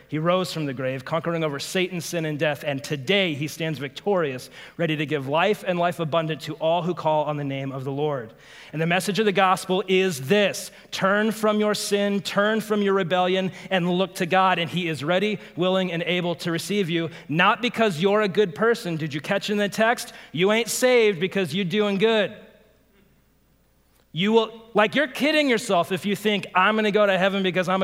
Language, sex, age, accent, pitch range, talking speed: English, male, 30-49, American, 155-205 Hz, 210 wpm